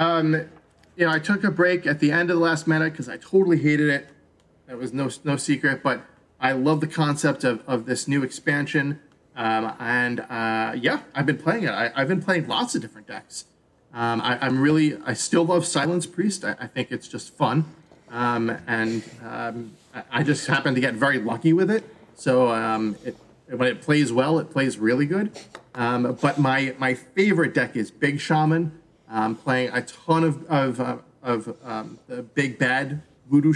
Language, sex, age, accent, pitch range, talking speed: English, male, 30-49, American, 125-160 Hz, 200 wpm